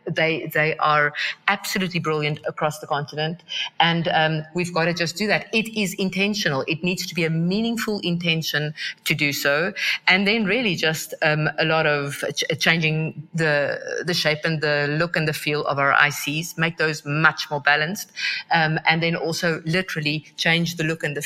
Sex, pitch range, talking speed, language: female, 150-175 Hz, 185 wpm, English